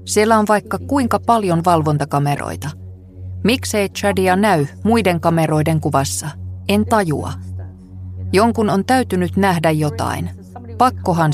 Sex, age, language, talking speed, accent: female, 20-39, Finnish, 105 wpm, native